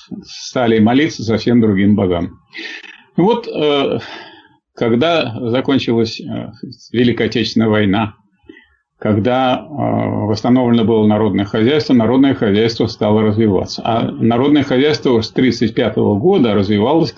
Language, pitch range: Russian, 110-135 Hz